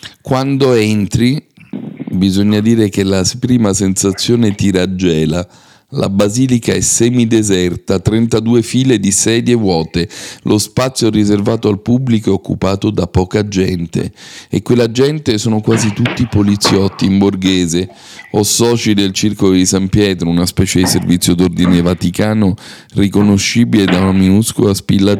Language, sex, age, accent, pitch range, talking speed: Italian, male, 40-59, native, 90-110 Hz, 135 wpm